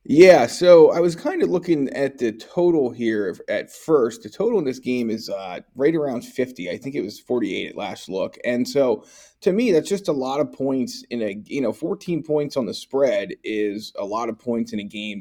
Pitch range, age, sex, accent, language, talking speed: 115-150 Hz, 30-49, male, American, English, 230 wpm